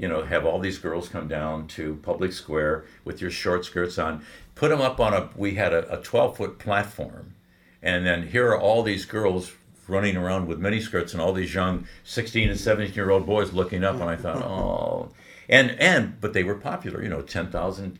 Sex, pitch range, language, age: male, 75-95 Hz, English, 60-79